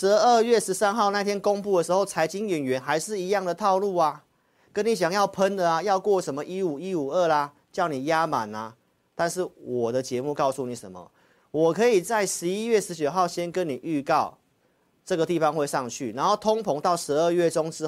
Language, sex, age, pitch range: Chinese, male, 40-59, 130-180 Hz